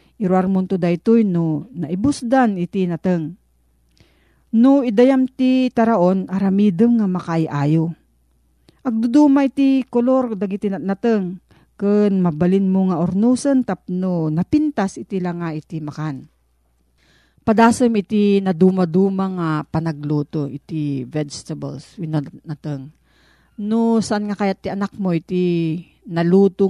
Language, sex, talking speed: Filipino, female, 115 wpm